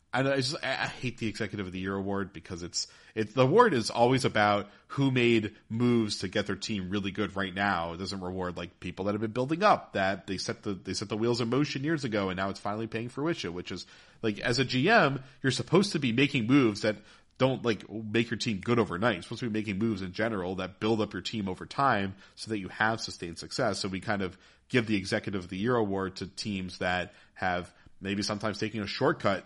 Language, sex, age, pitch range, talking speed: English, male, 40-59, 95-120 Hz, 240 wpm